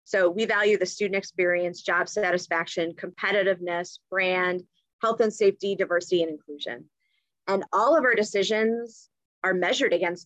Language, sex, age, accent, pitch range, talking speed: English, female, 30-49, American, 180-230 Hz, 140 wpm